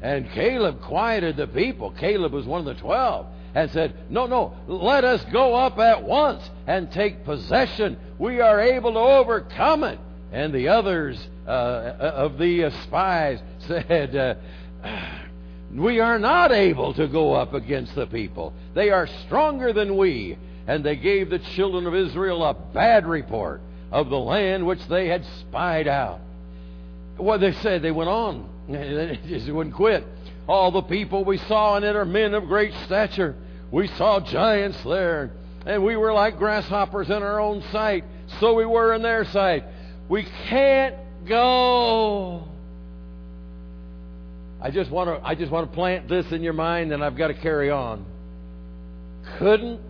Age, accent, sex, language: 60-79, American, male, English